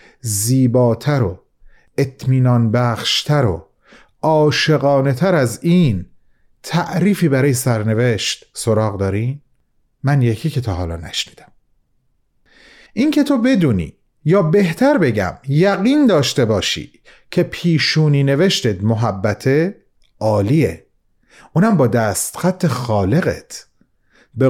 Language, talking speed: Persian, 100 wpm